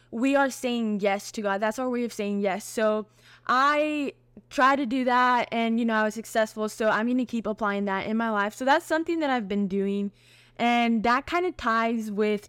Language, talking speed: English, 225 wpm